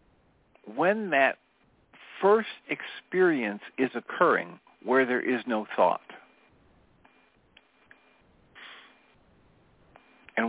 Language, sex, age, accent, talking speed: English, male, 60-79, American, 70 wpm